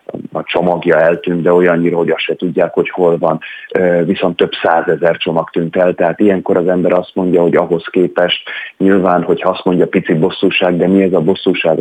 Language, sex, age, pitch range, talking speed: Hungarian, male, 30-49, 85-105 Hz, 200 wpm